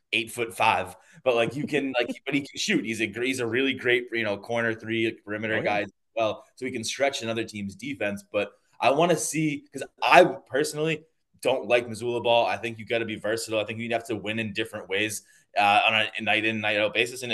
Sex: male